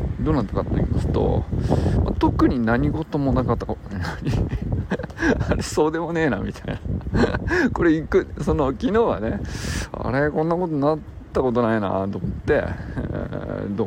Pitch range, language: 100-135 Hz, Japanese